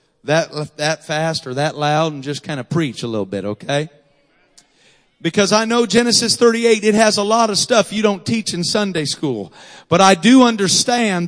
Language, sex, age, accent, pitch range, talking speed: English, male, 40-59, American, 195-235 Hz, 190 wpm